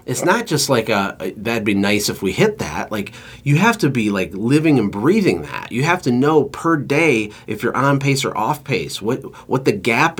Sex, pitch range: male, 110-135 Hz